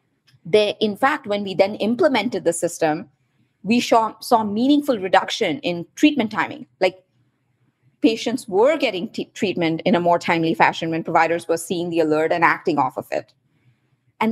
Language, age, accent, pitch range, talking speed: English, 30-49, Indian, 165-225 Hz, 170 wpm